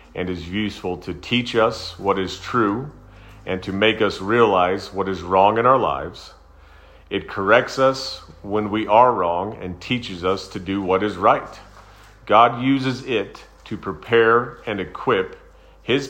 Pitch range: 95-115 Hz